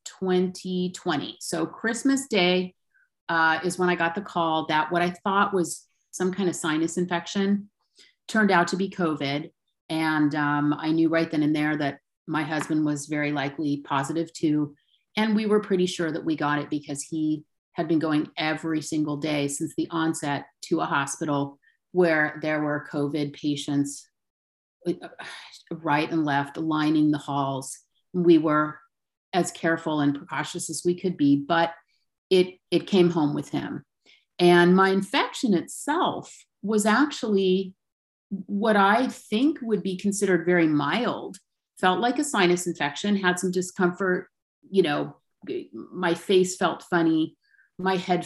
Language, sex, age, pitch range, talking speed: English, female, 30-49, 155-190 Hz, 155 wpm